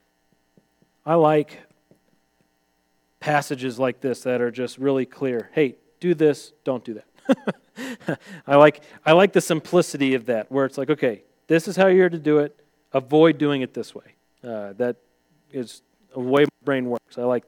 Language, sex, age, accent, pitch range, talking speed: English, male, 40-59, American, 120-170 Hz, 170 wpm